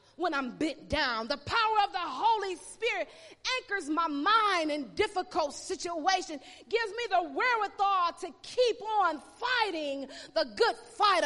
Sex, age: female, 30-49